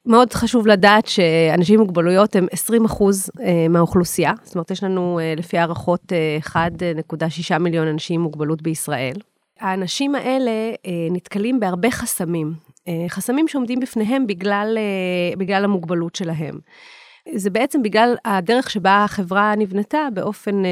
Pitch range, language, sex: 175-235 Hz, Hebrew, female